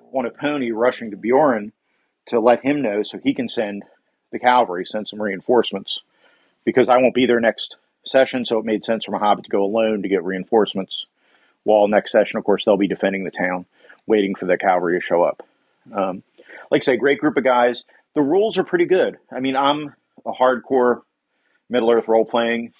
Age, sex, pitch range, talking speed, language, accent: 40-59, male, 105-130 Hz, 200 wpm, English, American